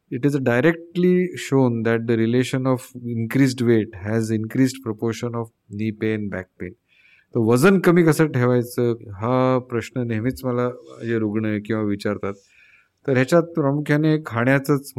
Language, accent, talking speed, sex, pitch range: Marathi, native, 190 wpm, male, 105-135 Hz